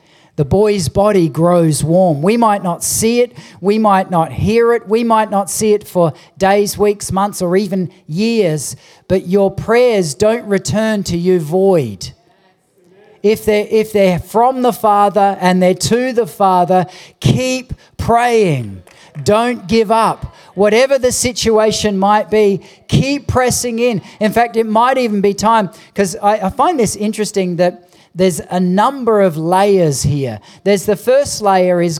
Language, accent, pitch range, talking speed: English, Australian, 170-215 Hz, 155 wpm